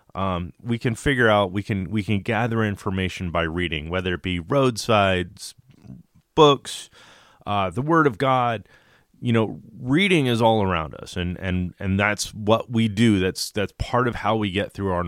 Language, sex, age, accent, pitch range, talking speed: English, male, 30-49, American, 90-115 Hz, 185 wpm